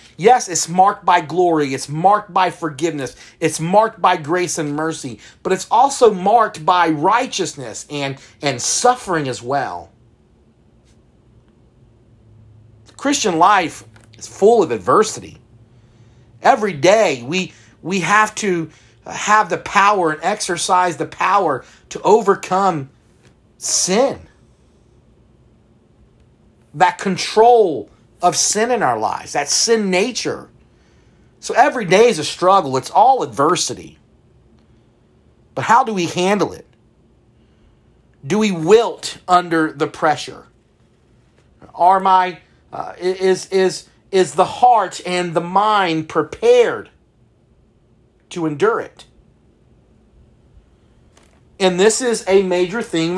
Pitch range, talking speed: 145-200 Hz, 115 wpm